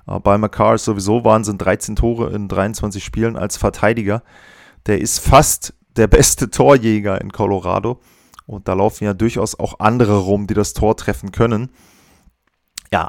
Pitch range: 100-125 Hz